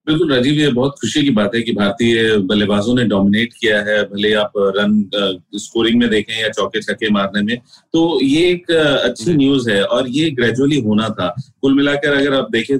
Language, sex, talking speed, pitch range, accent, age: Hindi, male, 200 wpm, 110-135 Hz, native, 30-49